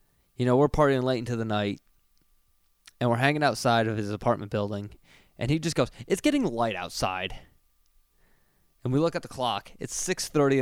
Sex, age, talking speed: male, 20-39, 180 wpm